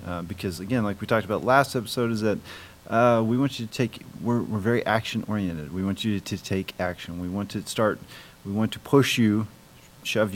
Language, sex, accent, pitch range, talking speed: English, male, American, 95-110 Hz, 225 wpm